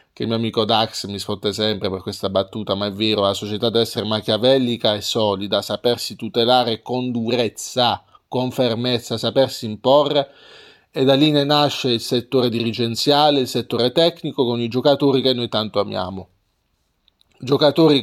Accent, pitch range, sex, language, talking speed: native, 110-140 Hz, male, Italian, 160 wpm